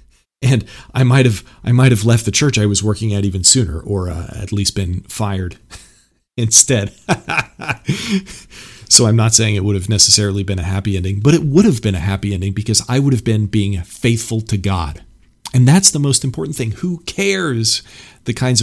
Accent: American